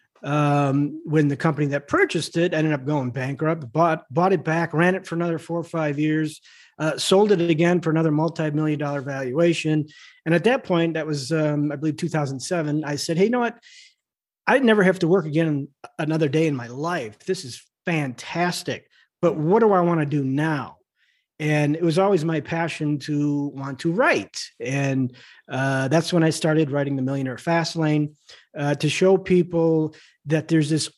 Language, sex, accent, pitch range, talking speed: English, male, American, 145-170 Hz, 195 wpm